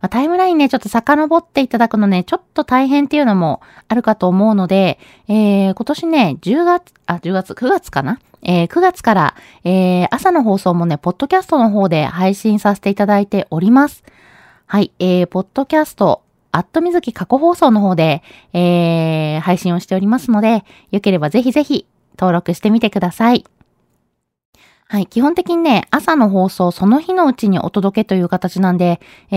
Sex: female